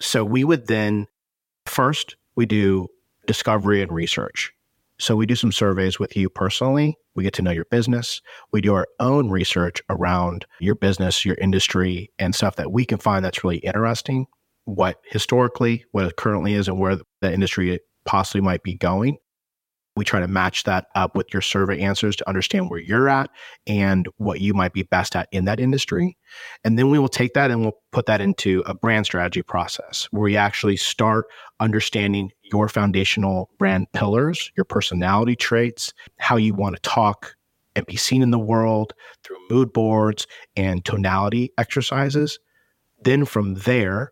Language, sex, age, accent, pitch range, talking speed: English, male, 30-49, American, 95-115 Hz, 175 wpm